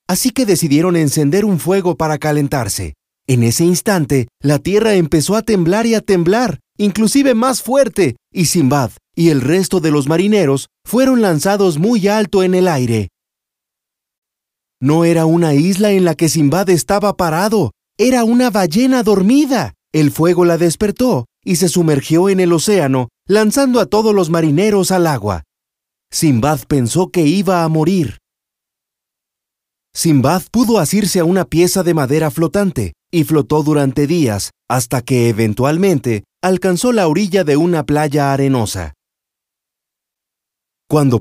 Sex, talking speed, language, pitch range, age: male, 145 wpm, Spanish, 140-195 Hz, 40-59